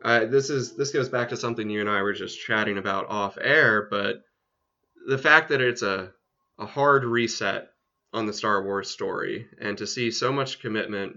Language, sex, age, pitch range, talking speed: English, male, 20-39, 100-115 Hz, 200 wpm